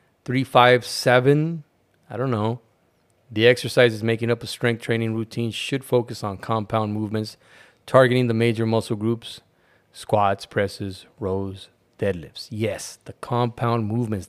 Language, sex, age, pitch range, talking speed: English, male, 30-49, 105-125 Hz, 135 wpm